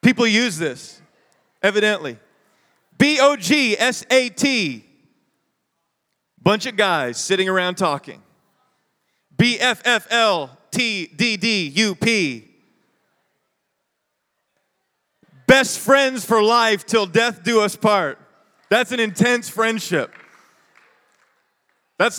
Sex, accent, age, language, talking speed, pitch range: male, American, 30-49, English, 70 wpm, 170-230 Hz